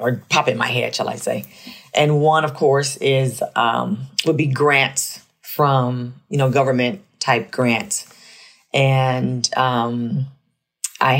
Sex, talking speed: female, 145 wpm